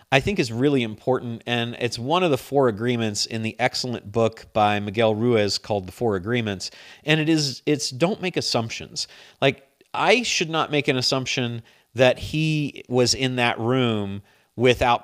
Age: 40-59